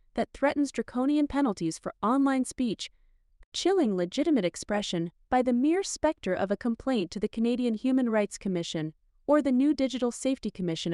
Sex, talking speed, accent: female, 160 wpm, American